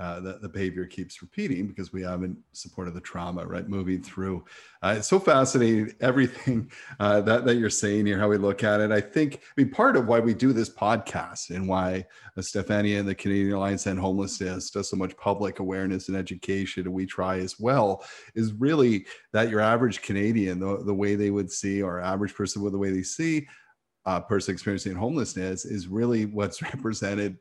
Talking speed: 205 wpm